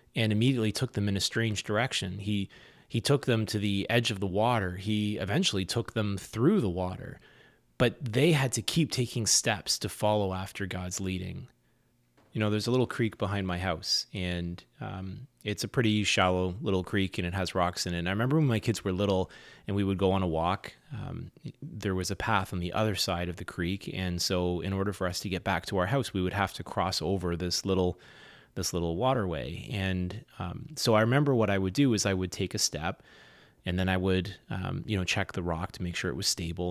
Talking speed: 230 wpm